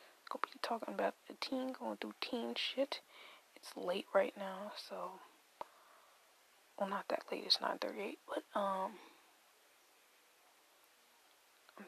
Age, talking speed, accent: 20-39, 115 wpm, American